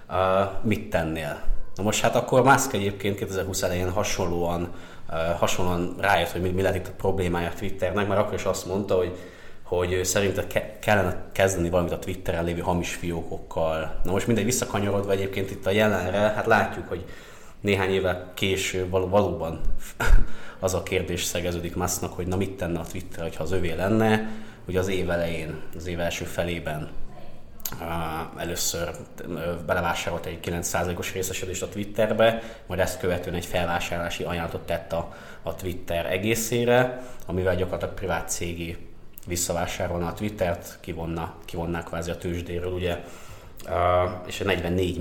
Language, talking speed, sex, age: Hungarian, 150 wpm, male, 20-39